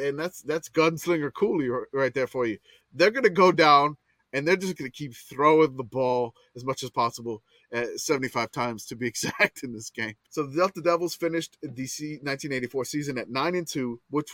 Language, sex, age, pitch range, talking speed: English, male, 20-39, 115-155 Hz, 195 wpm